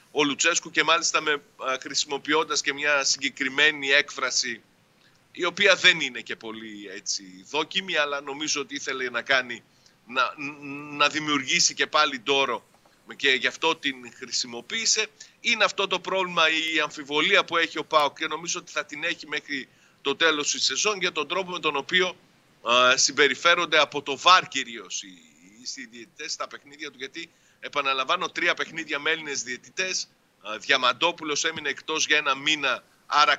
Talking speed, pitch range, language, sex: 155 wpm, 135-175 Hz, Greek, male